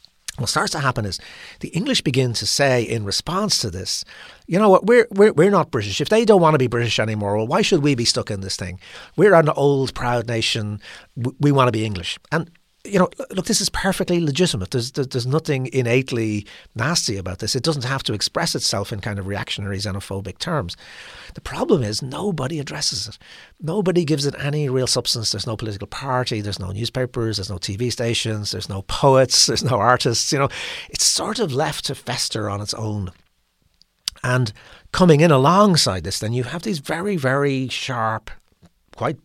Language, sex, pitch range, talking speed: English, male, 105-140 Hz, 200 wpm